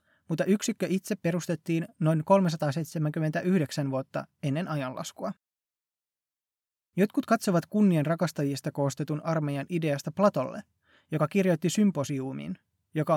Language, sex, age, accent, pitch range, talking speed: Finnish, male, 20-39, native, 145-185 Hz, 90 wpm